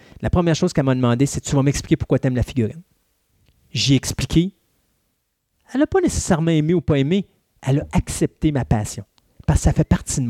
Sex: male